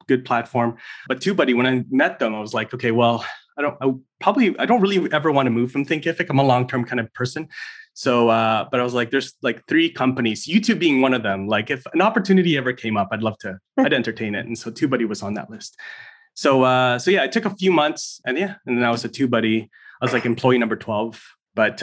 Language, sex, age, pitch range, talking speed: English, male, 30-49, 115-150 Hz, 255 wpm